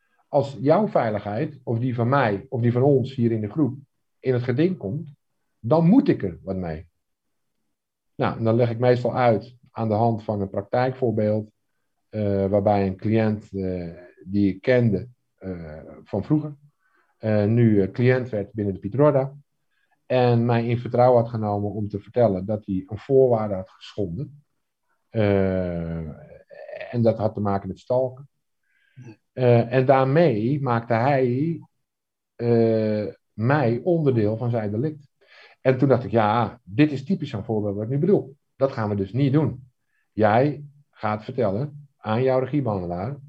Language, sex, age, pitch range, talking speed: Dutch, male, 50-69, 105-140 Hz, 160 wpm